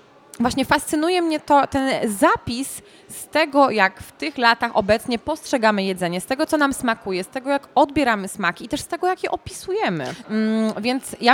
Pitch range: 220-290 Hz